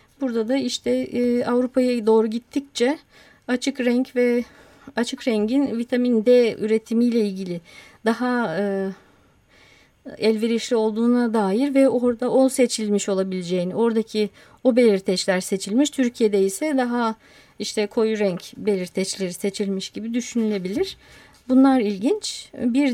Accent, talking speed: native, 105 wpm